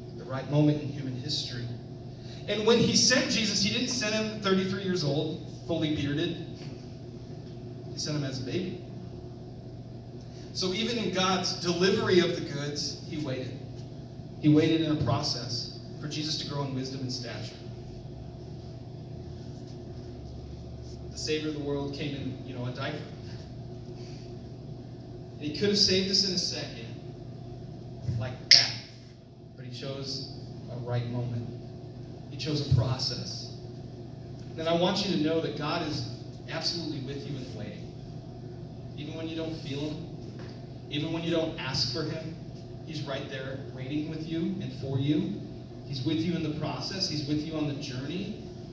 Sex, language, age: male, English, 30-49